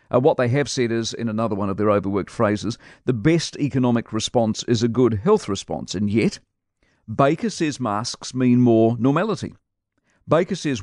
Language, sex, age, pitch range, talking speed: English, male, 50-69, 120-155 Hz, 175 wpm